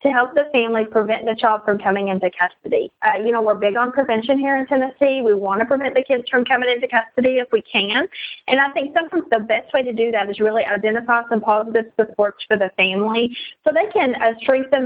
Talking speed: 230 wpm